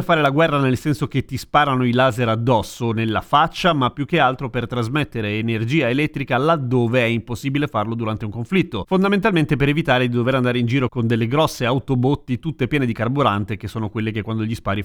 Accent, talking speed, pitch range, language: native, 205 wpm, 120-160 Hz, Italian